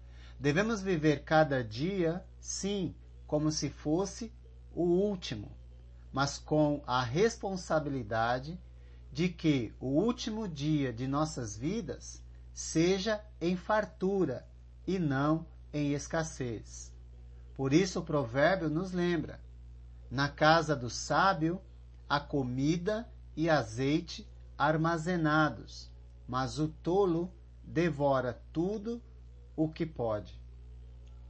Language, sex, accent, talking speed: Portuguese, male, Brazilian, 100 wpm